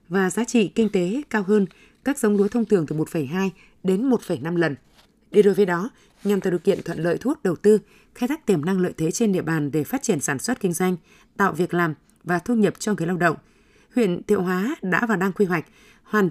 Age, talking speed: 20-39, 245 wpm